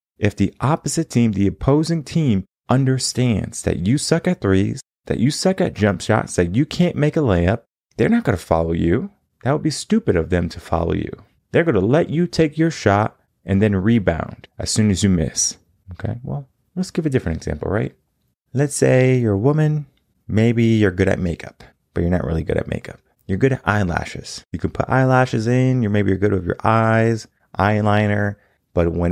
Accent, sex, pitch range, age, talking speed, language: American, male, 95-130 Hz, 30-49, 205 wpm, English